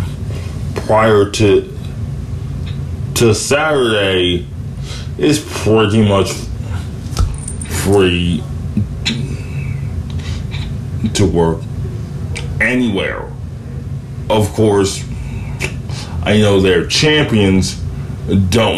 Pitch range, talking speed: 90-120 Hz, 60 wpm